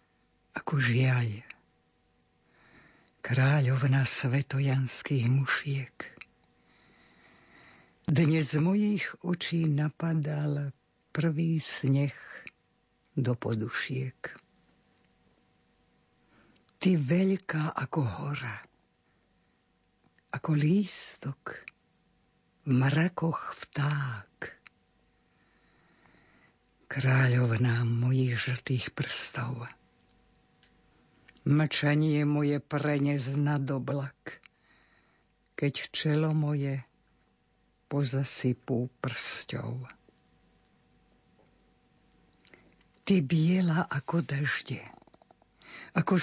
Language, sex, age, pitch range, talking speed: Slovak, female, 60-79, 130-165 Hz, 55 wpm